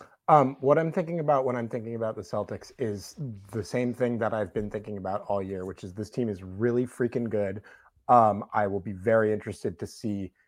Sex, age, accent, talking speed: male, 30-49, American, 220 wpm